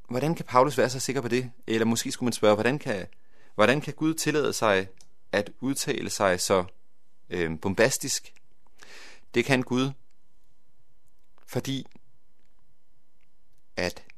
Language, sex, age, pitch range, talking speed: Danish, male, 40-59, 95-125 Hz, 130 wpm